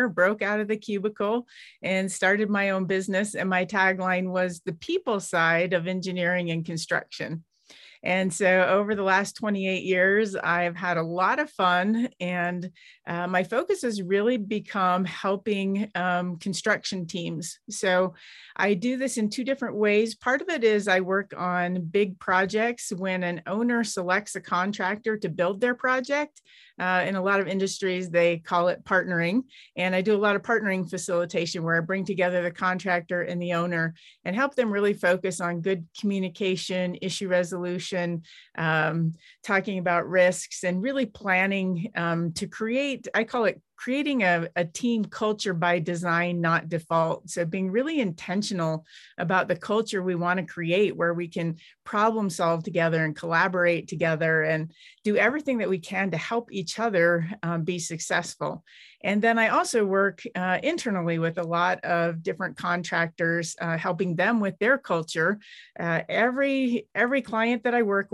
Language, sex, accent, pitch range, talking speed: English, female, American, 175-210 Hz, 165 wpm